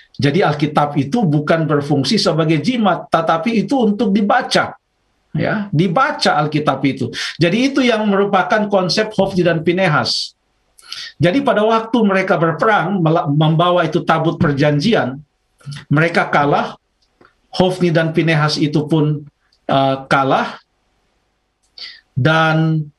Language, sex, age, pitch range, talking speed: Indonesian, male, 50-69, 150-205 Hz, 110 wpm